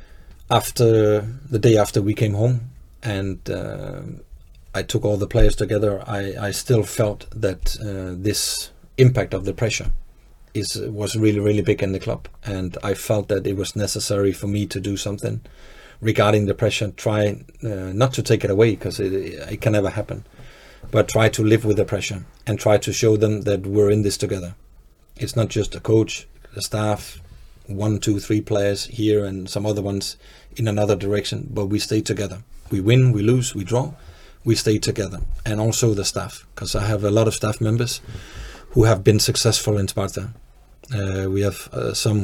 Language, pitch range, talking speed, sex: Czech, 100-115 Hz, 190 wpm, male